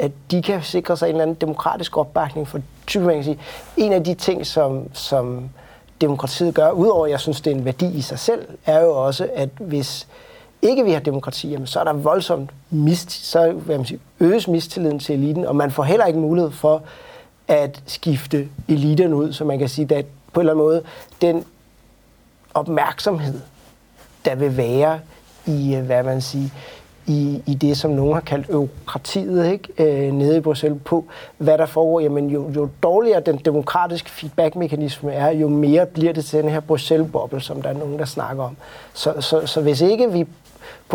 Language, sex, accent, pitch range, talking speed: Danish, male, native, 145-170 Hz, 195 wpm